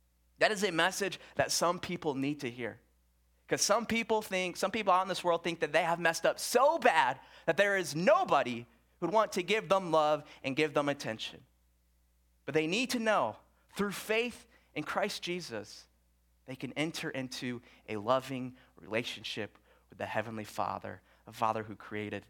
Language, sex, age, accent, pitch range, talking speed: English, male, 30-49, American, 120-180 Hz, 180 wpm